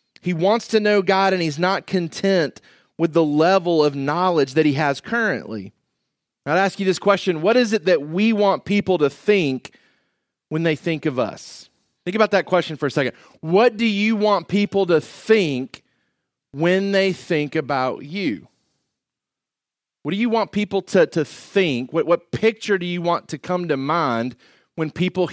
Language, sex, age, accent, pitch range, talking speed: English, male, 30-49, American, 135-185 Hz, 180 wpm